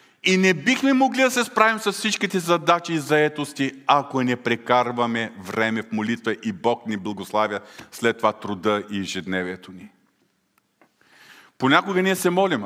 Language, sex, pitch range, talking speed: Bulgarian, male, 125-190 Hz, 150 wpm